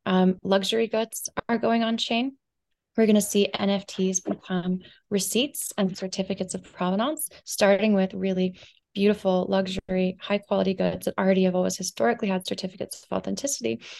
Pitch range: 195-225 Hz